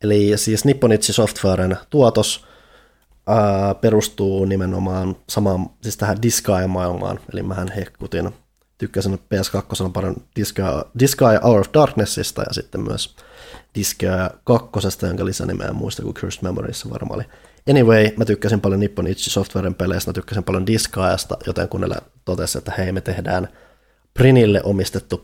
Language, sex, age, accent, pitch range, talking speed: Finnish, male, 20-39, native, 95-115 Hz, 135 wpm